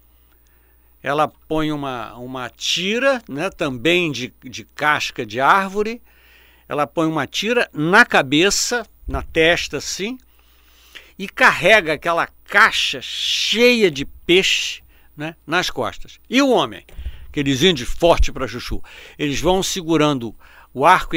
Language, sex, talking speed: Portuguese, male, 125 wpm